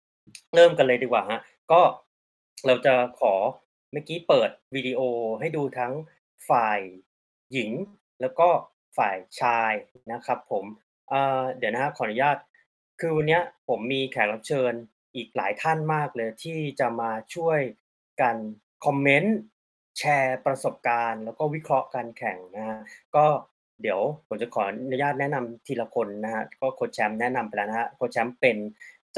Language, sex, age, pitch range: Thai, male, 20-39, 120-150 Hz